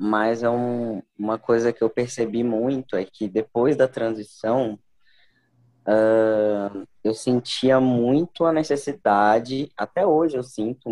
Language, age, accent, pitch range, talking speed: Portuguese, 20-39, Brazilian, 110-130 Hz, 115 wpm